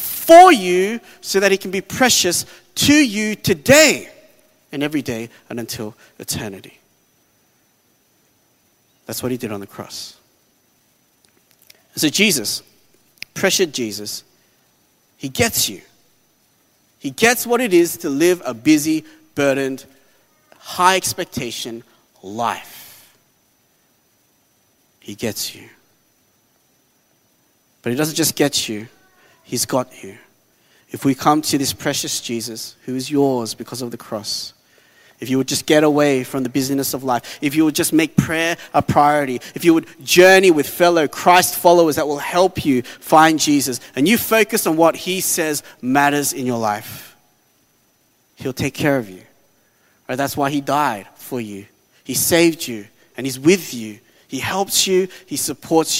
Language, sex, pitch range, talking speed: English, male, 125-185 Hz, 145 wpm